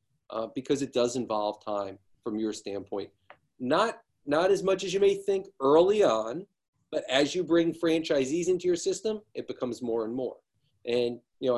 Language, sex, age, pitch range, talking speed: English, male, 40-59, 120-190 Hz, 180 wpm